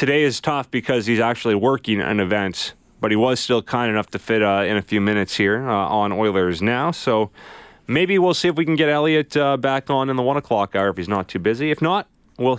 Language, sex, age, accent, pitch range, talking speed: English, male, 30-49, American, 100-140 Hz, 250 wpm